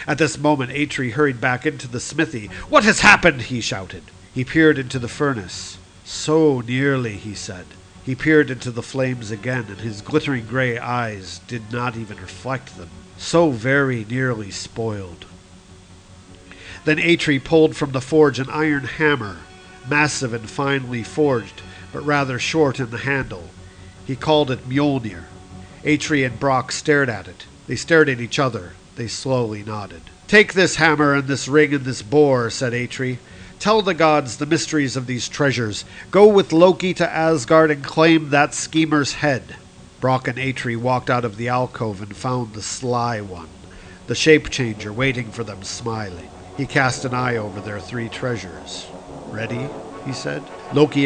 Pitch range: 105-145 Hz